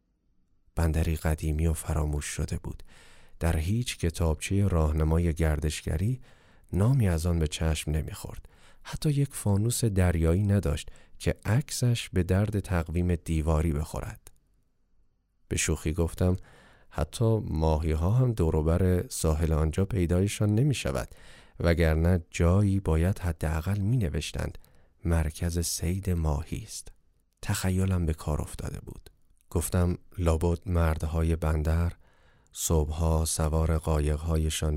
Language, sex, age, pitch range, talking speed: Persian, male, 40-59, 80-90 Hz, 105 wpm